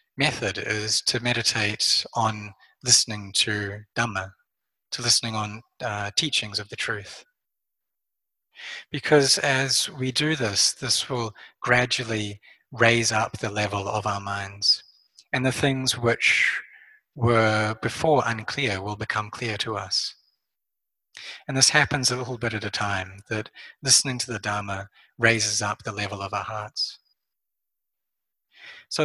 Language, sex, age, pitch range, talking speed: English, male, 30-49, 105-125 Hz, 135 wpm